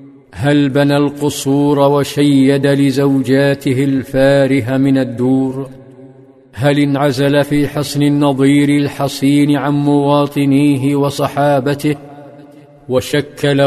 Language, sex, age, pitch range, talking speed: Arabic, male, 50-69, 135-140 Hz, 80 wpm